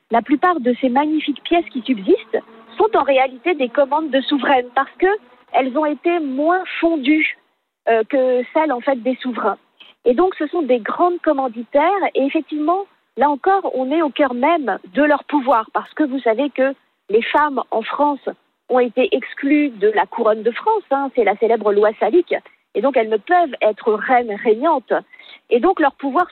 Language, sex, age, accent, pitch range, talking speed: French, female, 50-69, French, 245-325 Hz, 185 wpm